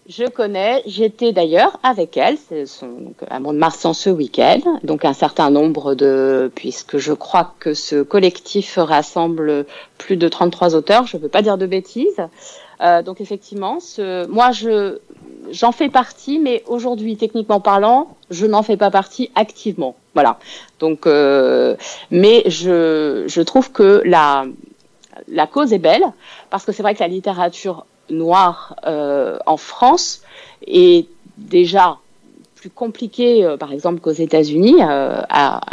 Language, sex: French, female